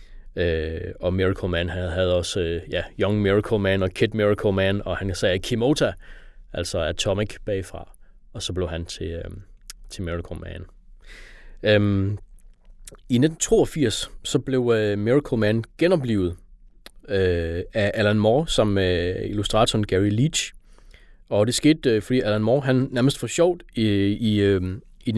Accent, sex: native, male